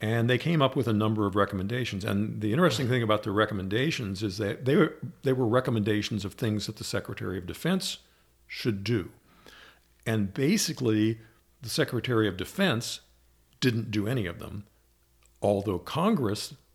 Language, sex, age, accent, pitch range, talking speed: English, male, 50-69, American, 100-120 Hz, 160 wpm